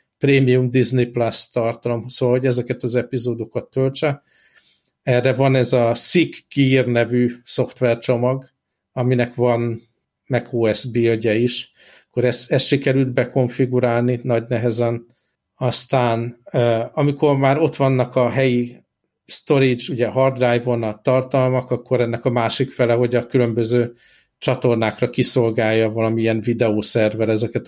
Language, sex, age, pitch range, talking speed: Hungarian, male, 60-79, 115-130 Hz, 115 wpm